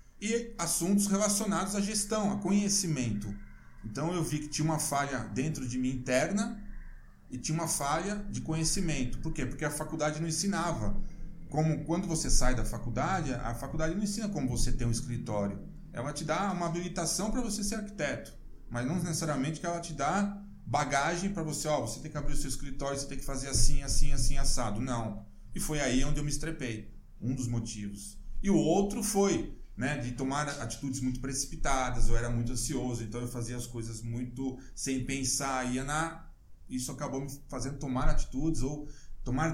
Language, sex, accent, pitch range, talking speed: Portuguese, male, Brazilian, 125-165 Hz, 190 wpm